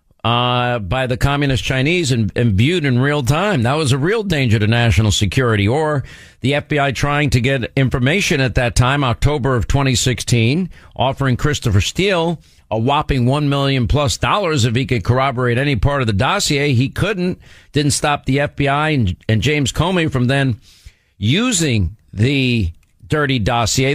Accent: American